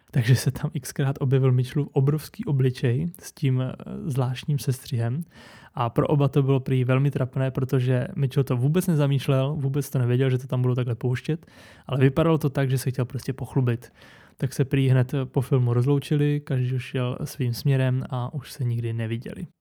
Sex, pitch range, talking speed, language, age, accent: male, 130-150 Hz, 185 wpm, Czech, 20-39, native